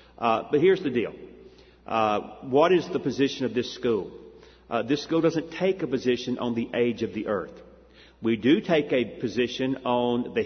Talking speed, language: 190 wpm, English